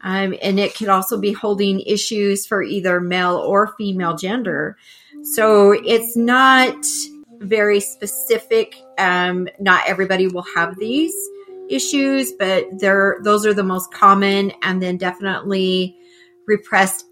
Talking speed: 125 wpm